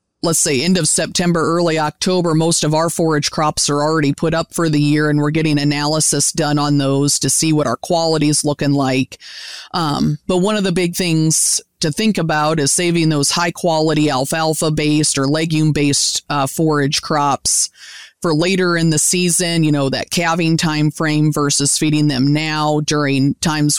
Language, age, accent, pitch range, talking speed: English, 30-49, American, 145-165 Hz, 175 wpm